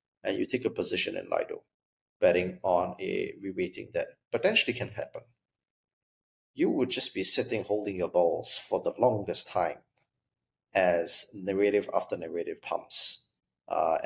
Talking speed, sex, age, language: 140 wpm, male, 30-49, English